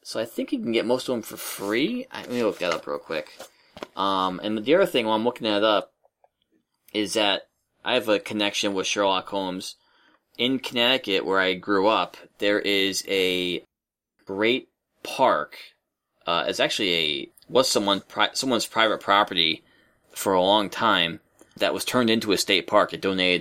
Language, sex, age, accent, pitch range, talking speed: English, male, 20-39, American, 95-120 Hz, 180 wpm